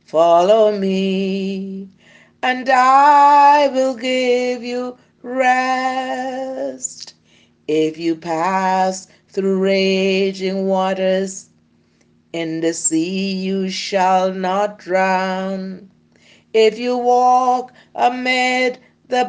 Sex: female